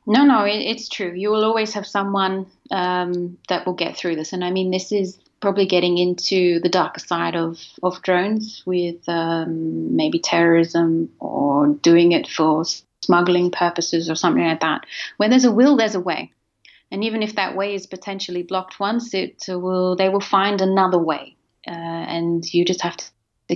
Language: English